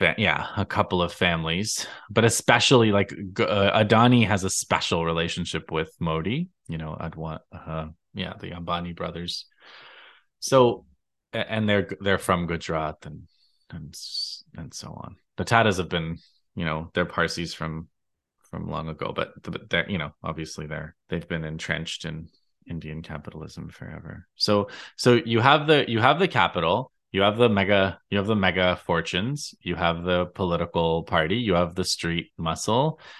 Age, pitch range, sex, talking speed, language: 20-39, 80-105 Hz, male, 160 wpm, English